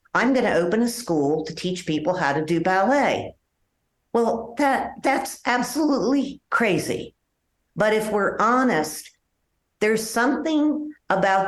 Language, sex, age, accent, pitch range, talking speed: English, female, 50-69, American, 160-225 Hz, 125 wpm